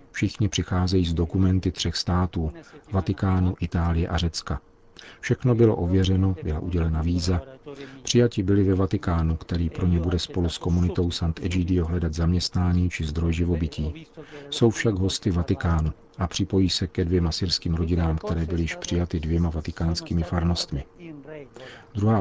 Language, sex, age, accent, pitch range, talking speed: Czech, male, 40-59, native, 85-105 Hz, 145 wpm